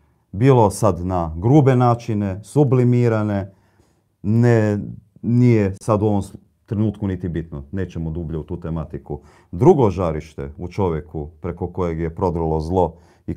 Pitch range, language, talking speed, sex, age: 90-110 Hz, Croatian, 130 wpm, male, 40-59